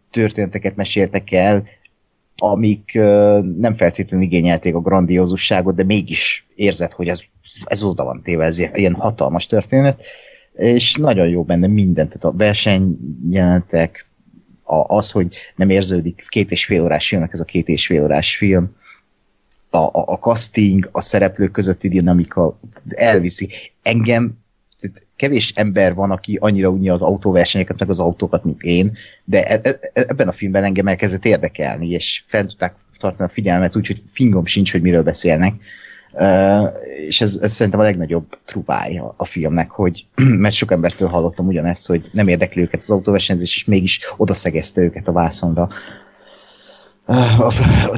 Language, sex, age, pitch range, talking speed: Hungarian, male, 30-49, 90-105 Hz, 150 wpm